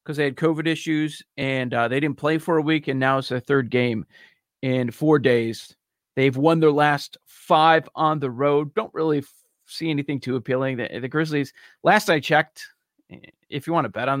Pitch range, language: 130-165 Hz, English